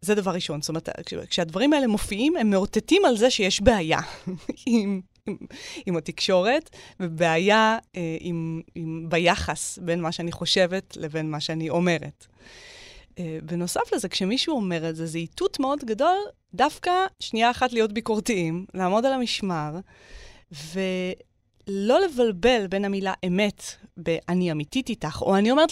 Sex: female